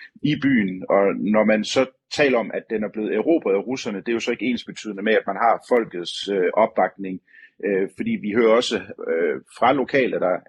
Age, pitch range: 30-49, 100-125 Hz